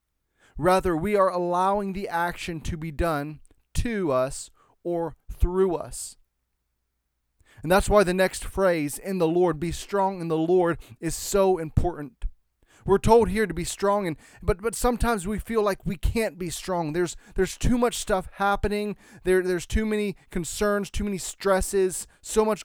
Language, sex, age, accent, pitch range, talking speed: English, male, 30-49, American, 160-200 Hz, 170 wpm